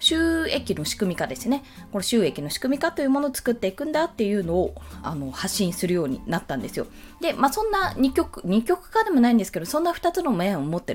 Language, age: Japanese, 20-39